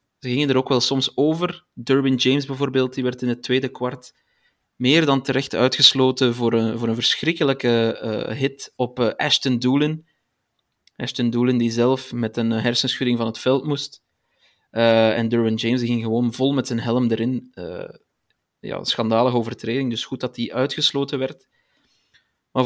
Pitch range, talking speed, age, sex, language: 115-130 Hz, 165 wpm, 20-39, male, Dutch